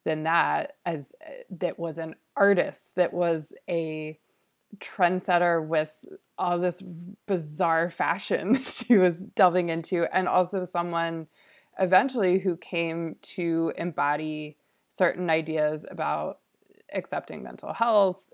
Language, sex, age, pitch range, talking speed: English, female, 20-39, 155-185 Hz, 120 wpm